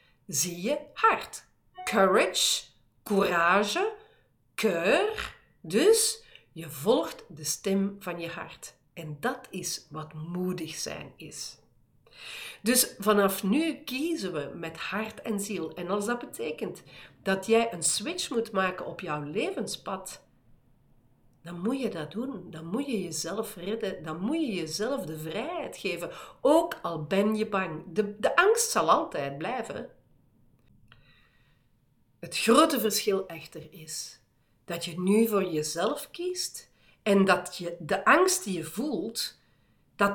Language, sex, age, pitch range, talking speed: Dutch, female, 50-69, 170-255 Hz, 135 wpm